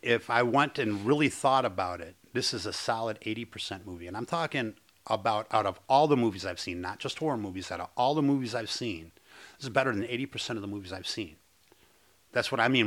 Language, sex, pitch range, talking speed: English, male, 95-125 Hz, 235 wpm